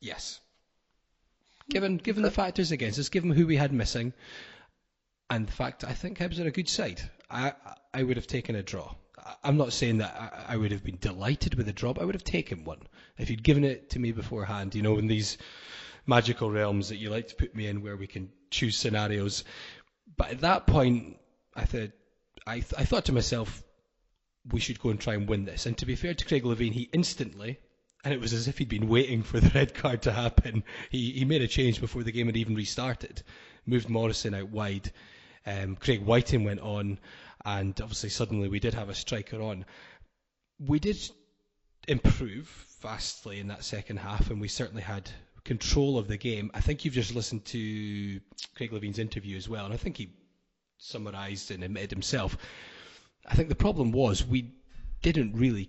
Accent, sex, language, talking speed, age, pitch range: British, male, English, 200 wpm, 20-39, 105-125 Hz